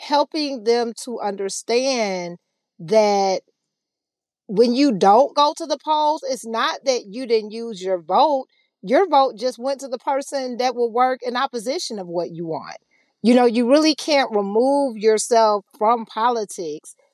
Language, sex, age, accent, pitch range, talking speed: English, female, 40-59, American, 200-255 Hz, 160 wpm